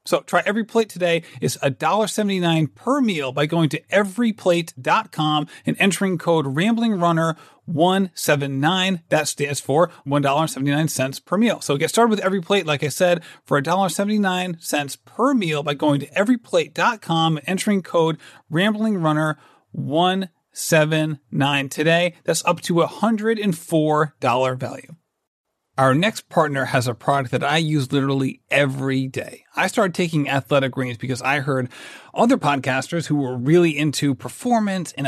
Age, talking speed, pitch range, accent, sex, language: 40-59, 135 wpm, 145-195 Hz, American, male, English